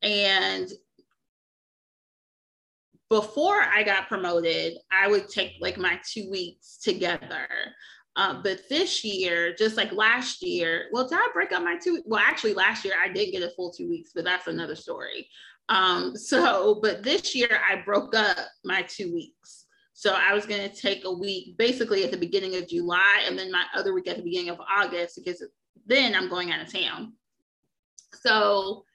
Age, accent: 30-49, American